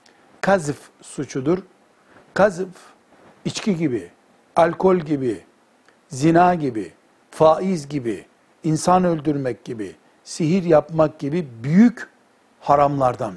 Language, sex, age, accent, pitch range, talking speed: Turkish, male, 60-79, native, 145-190 Hz, 85 wpm